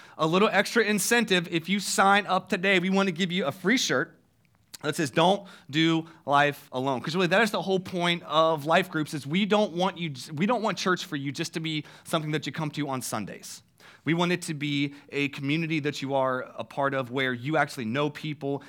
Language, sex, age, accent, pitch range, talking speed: English, male, 30-49, American, 140-185 Hz, 220 wpm